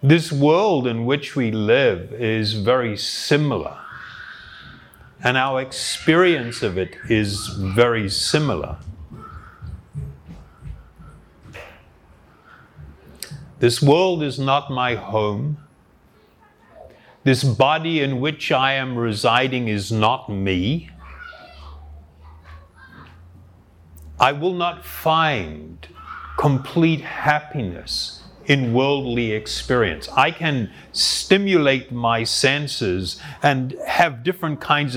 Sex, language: male, English